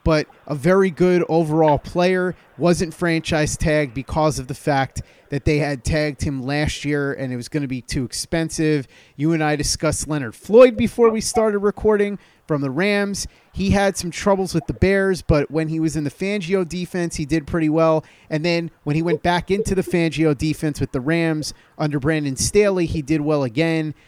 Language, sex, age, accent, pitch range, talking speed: English, male, 30-49, American, 145-180 Hz, 200 wpm